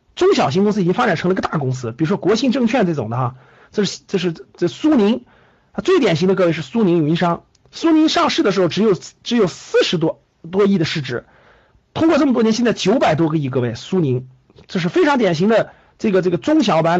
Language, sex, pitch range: Chinese, male, 135-205 Hz